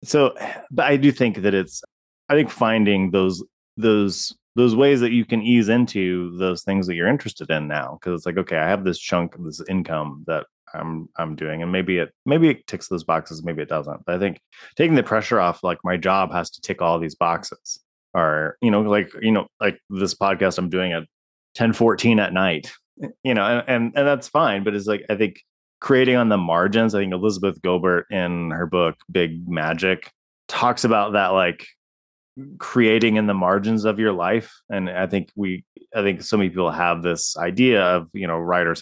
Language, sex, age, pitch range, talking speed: English, male, 20-39, 85-110 Hz, 210 wpm